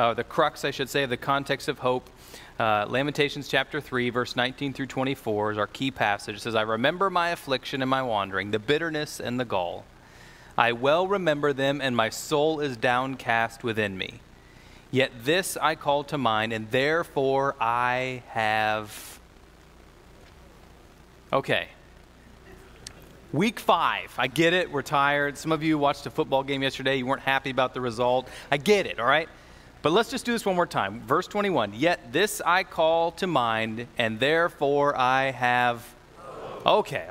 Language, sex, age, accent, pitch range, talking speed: English, male, 30-49, American, 115-150 Hz, 170 wpm